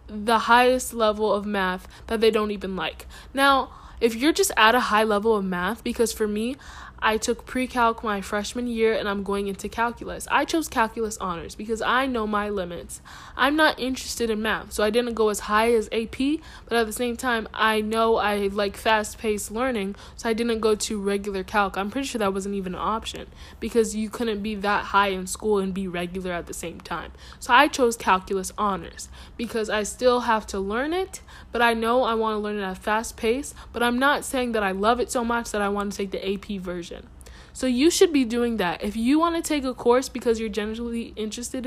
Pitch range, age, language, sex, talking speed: 205-245 Hz, 10-29, English, female, 225 wpm